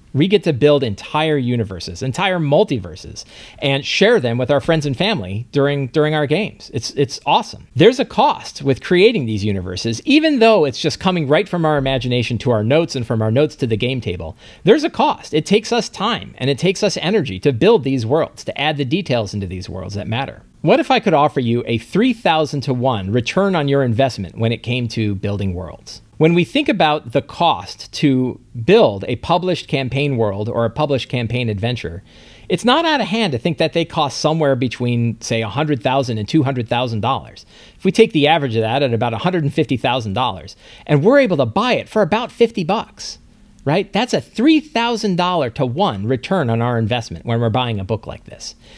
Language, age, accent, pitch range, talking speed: English, 40-59, American, 115-175 Hz, 205 wpm